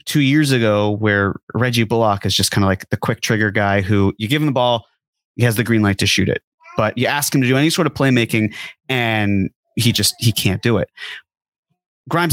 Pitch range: 110-135 Hz